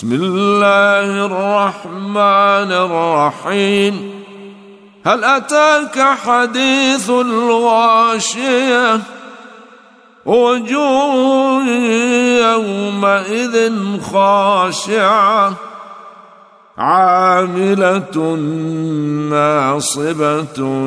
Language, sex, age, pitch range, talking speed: Arabic, male, 50-69, 195-240 Hz, 35 wpm